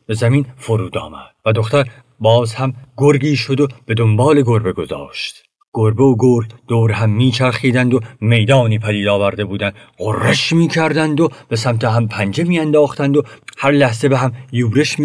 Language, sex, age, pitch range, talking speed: Persian, male, 50-69, 115-140 Hz, 160 wpm